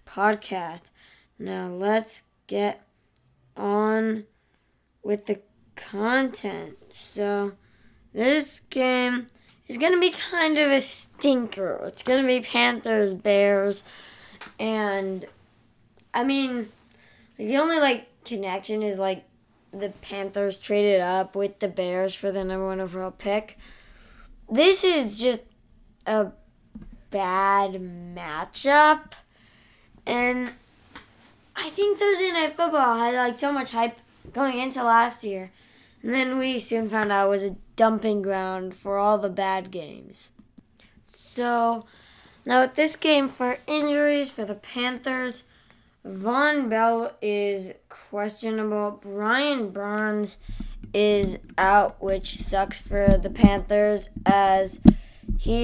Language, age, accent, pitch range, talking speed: English, 20-39, American, 195-250 Hz, 115 wpm